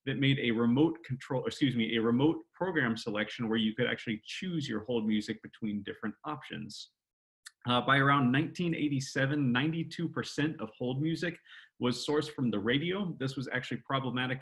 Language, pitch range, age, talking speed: English, 115-145 Hz, 30-49, 160 wpm